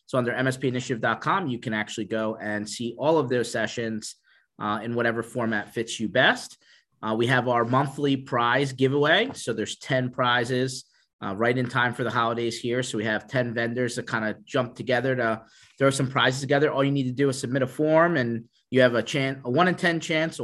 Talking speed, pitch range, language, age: 215 wpm, 115-140 Hz, English, 30-49